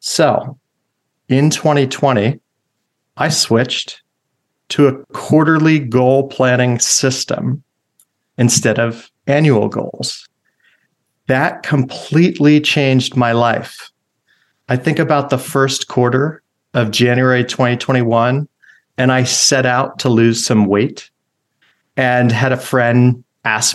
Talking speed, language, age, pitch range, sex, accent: 105 wpm, English, 40-59, 115-140 Hz, male, American